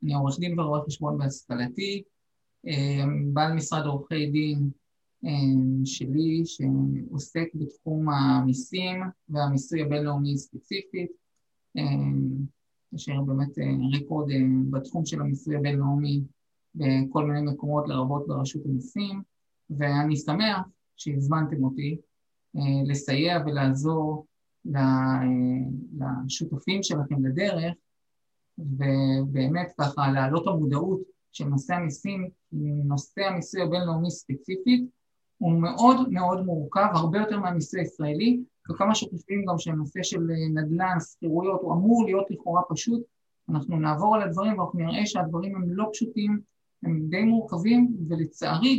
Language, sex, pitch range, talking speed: Hebrew, male, 140-190 Hz, 105 wpm